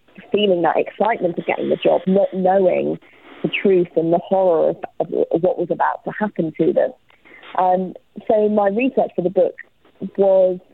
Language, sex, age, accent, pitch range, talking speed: English, female, 20-39, British, 170-190 Hz, 175 wpm